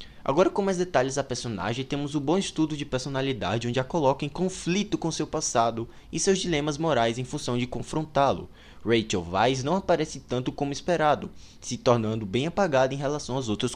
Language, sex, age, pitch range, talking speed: Portuguese, male, 20-39, 105-150 Hz, 190 wpm